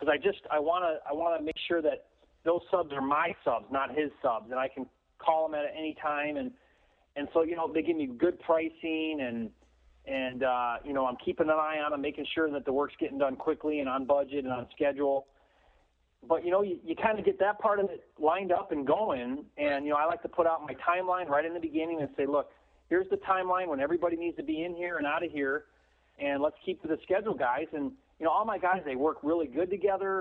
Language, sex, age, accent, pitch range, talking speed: English, male, 30-49, American, 145-185 Hz, 255 wpm